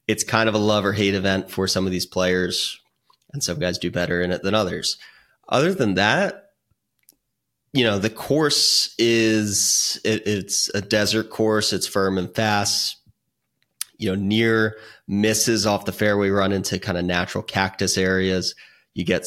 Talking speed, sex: 170 wpm, male